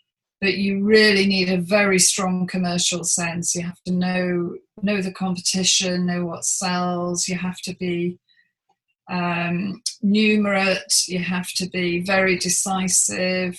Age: 40-59